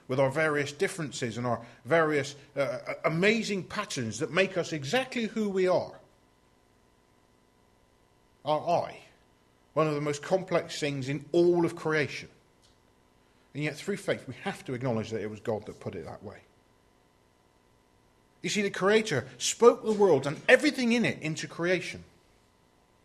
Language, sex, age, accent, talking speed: English, male, 40-59, British, 155 wpm